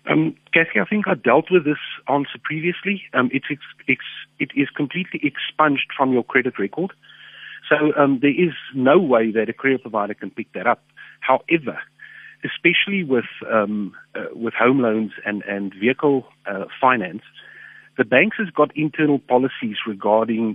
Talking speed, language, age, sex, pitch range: 165 wpm, English, 50-69, male, 110-155 Hz